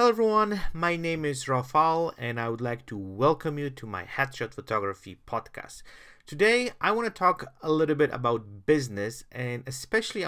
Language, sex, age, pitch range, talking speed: English, male, 40-59, 110-145 Hz, 175 wpm